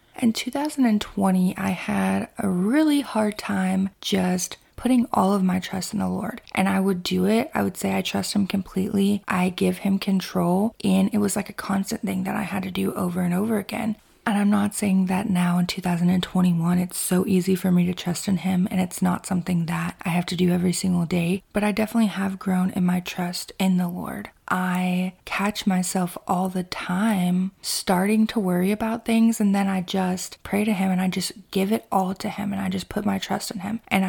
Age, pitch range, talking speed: 20-39, 185-205 Hz, 220 wpm